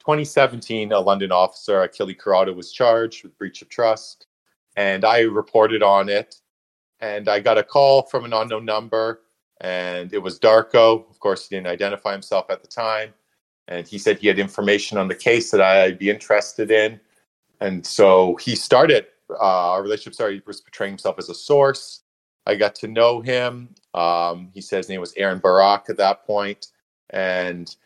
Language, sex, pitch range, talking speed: English, male, 90-110 Hz, 185 wpm